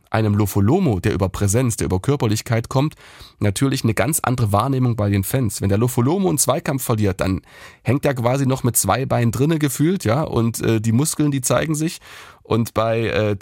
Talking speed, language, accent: 195 wpm, German, German